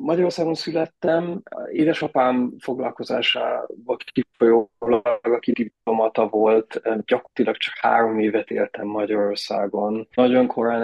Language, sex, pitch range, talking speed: Hungarian, male, 115-130 Hz, 90 wpm